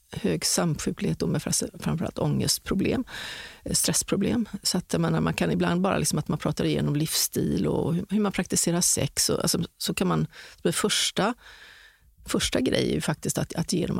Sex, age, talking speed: female, 40-59, 165 wpm